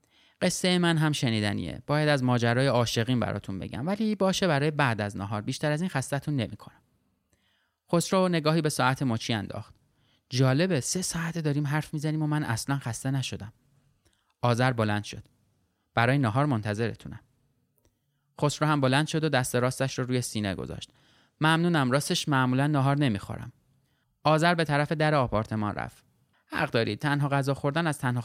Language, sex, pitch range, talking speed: Persian, male, 110-150 Hz, 155 wpm